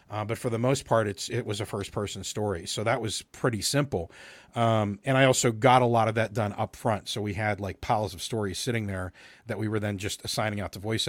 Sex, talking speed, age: male, 260 wpm, 40-59